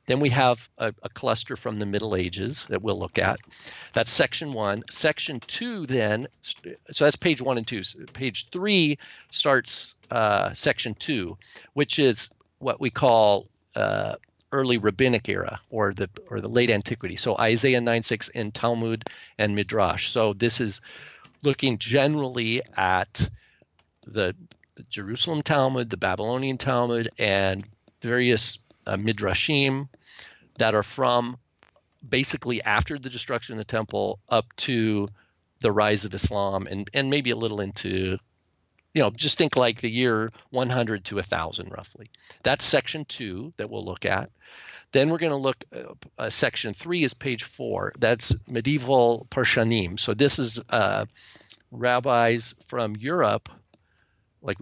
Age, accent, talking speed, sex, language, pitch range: 50-69, American, 150 wpm, male, English, 105-130 Hz